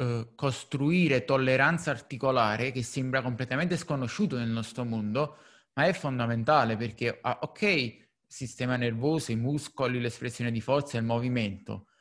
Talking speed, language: 135 wpm, Italian